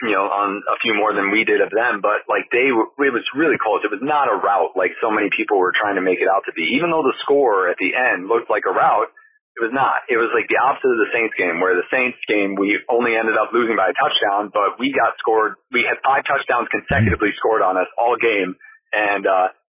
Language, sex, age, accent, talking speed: English, male, 30-49, American, 265 wpm